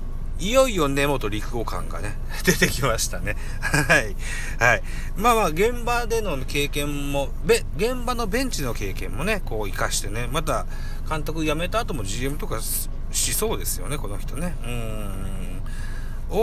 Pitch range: 105-150 Hz